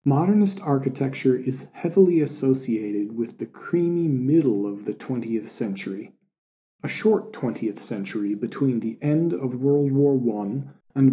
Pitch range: 115-145 Hz